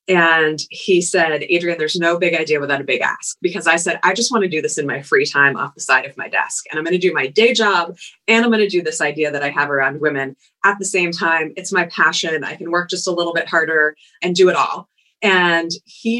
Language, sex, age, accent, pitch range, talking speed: English, female, 30-49, American, 160-210 Hz, 265 wpm